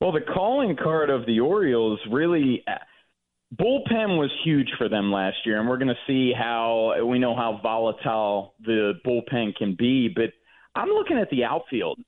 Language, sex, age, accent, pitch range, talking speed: English, male, 30-49, American, 110-140 Hz, 175 wpm